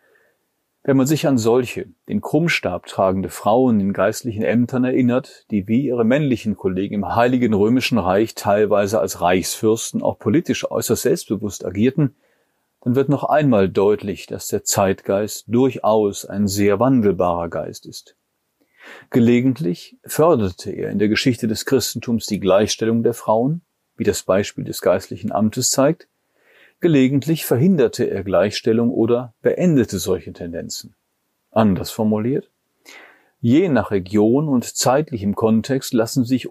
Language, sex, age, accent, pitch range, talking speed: German, male, 40-59, German, 100-130 Hz, 135 wpm